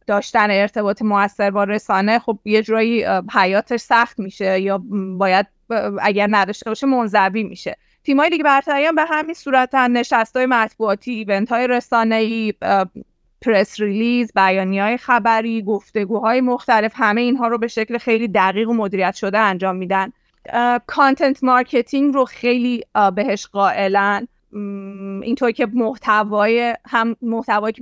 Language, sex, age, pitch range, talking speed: Persian, female, 30-49, 200-240 Hz, 130 wpm